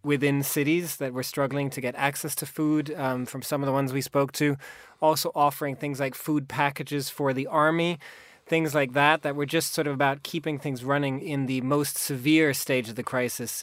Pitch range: 130-150 Hz